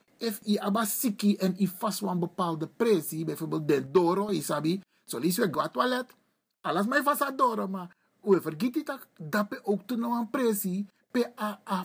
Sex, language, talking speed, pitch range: male, Dutch, 150 wpm, 175-230 Hz